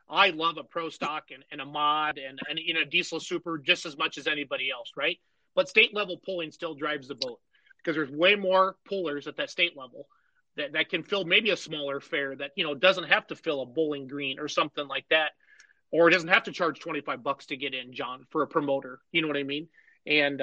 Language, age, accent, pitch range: English, 30-49, American, 155-190 Hz